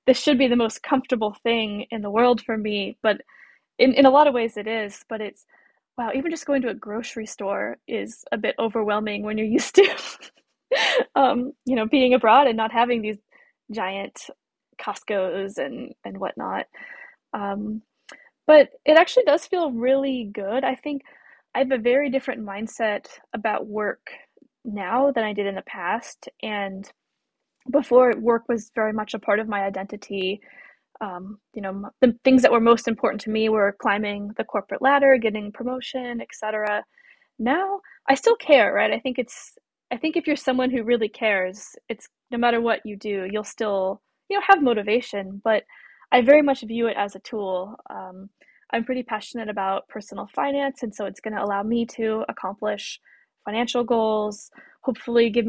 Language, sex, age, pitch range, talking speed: English, female, 10-29, 210-265 Hz, 180 wpm